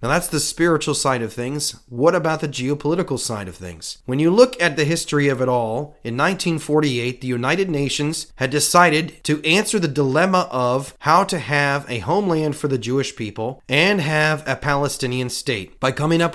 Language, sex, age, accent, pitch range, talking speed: English, male, 30-49, American, 115-155 Hz, 190 wpm